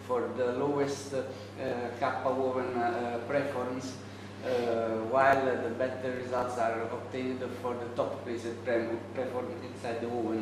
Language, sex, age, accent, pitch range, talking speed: English, male, 20-39, Italian, 115-130 Hz, 145 wpm